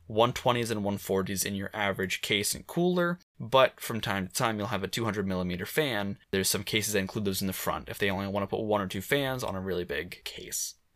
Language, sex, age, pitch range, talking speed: English, male, 10-29, 100-140 Hz, 235 wpm